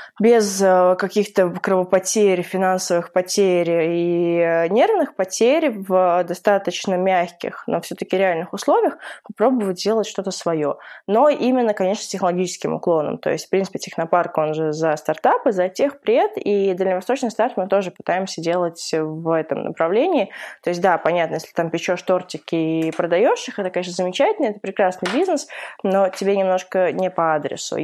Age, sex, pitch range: 20-39, female, 175-210 Hz